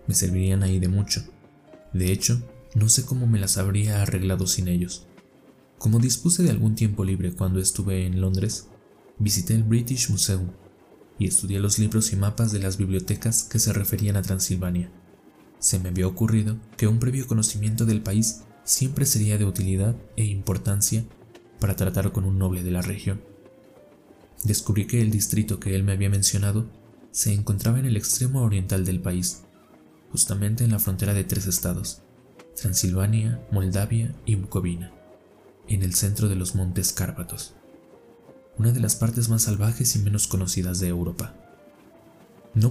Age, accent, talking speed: 20-39, Mexican, 160 wpm